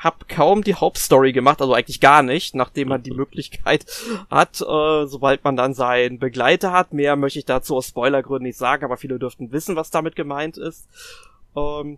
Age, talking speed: 20-39, 190 wpm